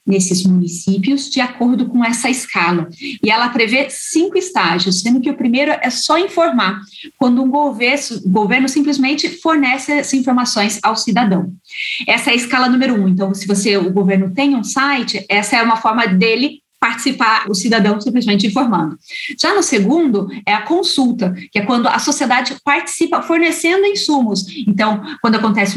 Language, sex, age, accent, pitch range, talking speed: Portuguese, female, 30-49, Brazilian, 215-280 Hz, 160 wpm